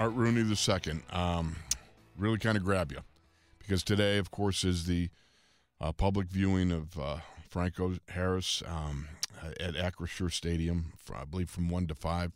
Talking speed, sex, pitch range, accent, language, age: 155 wpm, male, 85-105 Hz, American, English, 40-59